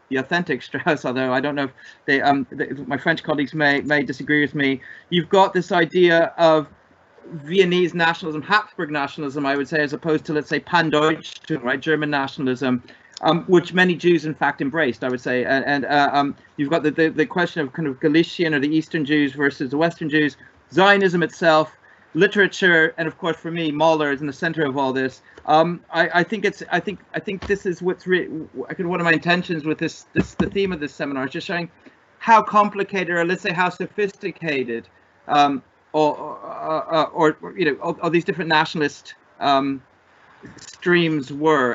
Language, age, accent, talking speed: English, 40-59, British, 200 wpm